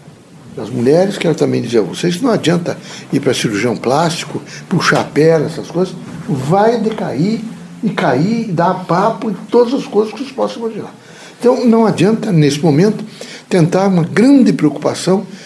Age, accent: 60-79, Brazilian